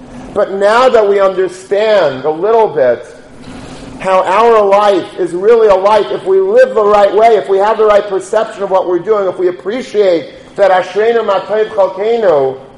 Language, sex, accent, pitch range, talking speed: English, male, American, 175-215 Hz, 180 wpm